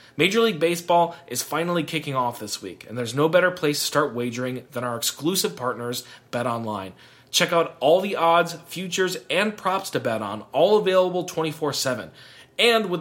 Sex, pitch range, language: male, 140-180 Hz, English